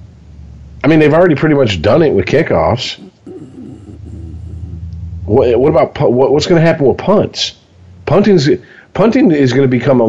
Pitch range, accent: 90-135 Hz, American